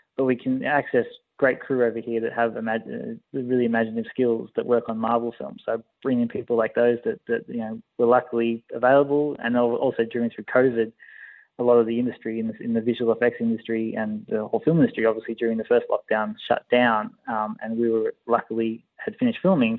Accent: Australian